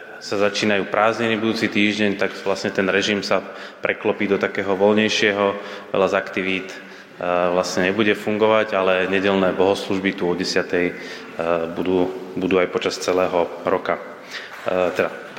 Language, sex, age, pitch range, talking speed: Slovak, male, 30-49, 95-110 Hz, 125 wpm